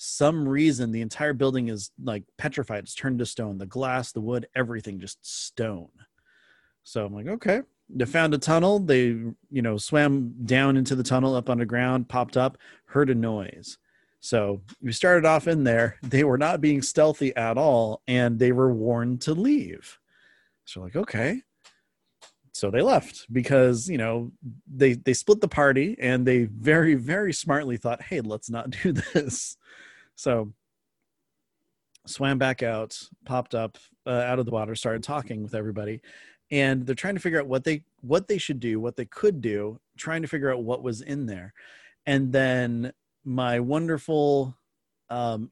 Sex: male